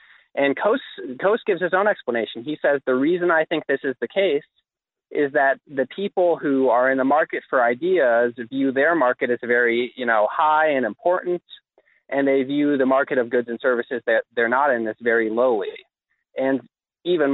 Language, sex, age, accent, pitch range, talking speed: English, male, 30-49, American, 120-145 Hz, 195 wpm